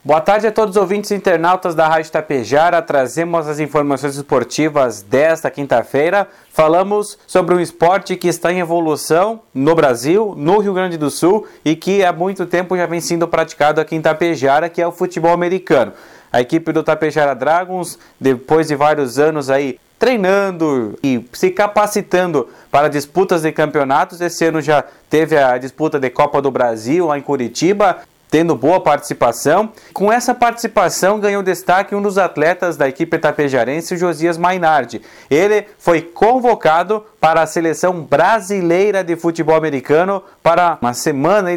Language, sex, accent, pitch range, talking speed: Portuguese, male, Brazilian, 150-180 Hz, 160 wpm